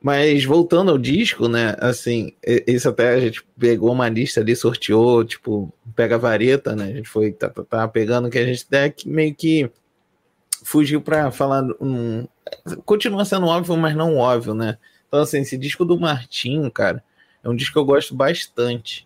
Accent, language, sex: Brazilian, Portuguese, male